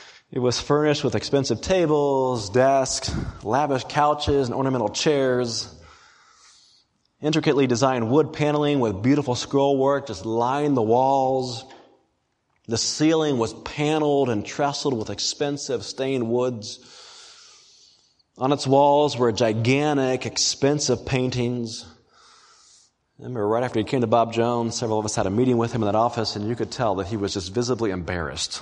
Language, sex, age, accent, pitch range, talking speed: English, male, 30-49, American, 115-145 Hz, 145 wpm